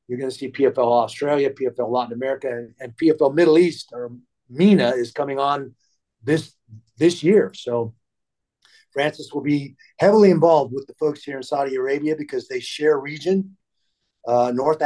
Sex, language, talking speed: male, English, 160 wpm